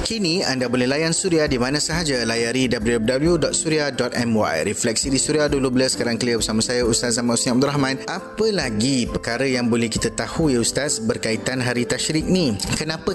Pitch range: 115-150 Hz